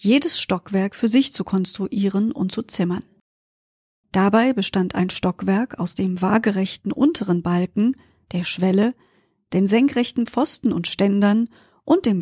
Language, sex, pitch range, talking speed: German, female, 190-240 Hz, 135 wpm